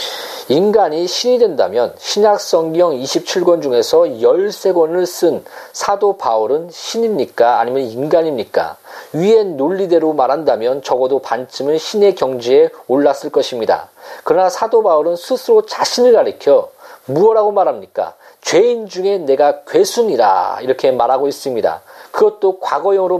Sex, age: male, 40-59